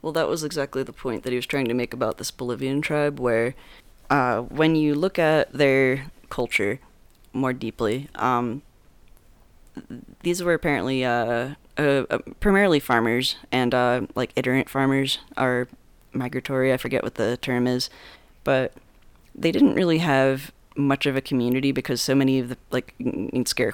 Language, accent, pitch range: English, American, 120-140 Hz